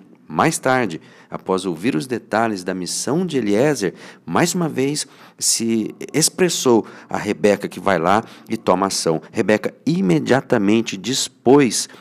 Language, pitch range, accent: Portuguese, 95-120 Hz, Brazilian